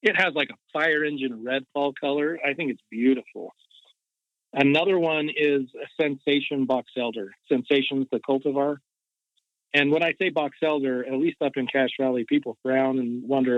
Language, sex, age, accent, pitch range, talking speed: English, male, 40-59, American, 130-150 Hz, 175 wpm